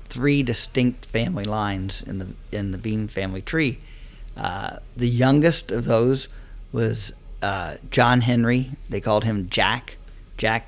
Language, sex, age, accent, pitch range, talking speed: English, male, 50-69, American, 105-130 Hz, 140 wpm